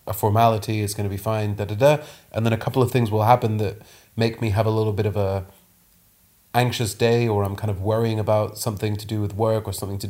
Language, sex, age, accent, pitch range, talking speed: English, male, 30-49, British, 105-120 Hz, 245 wpm